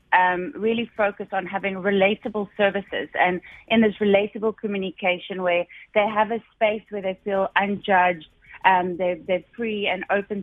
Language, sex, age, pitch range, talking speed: English, female, 30-49, 185-220 Hz, 155 wpm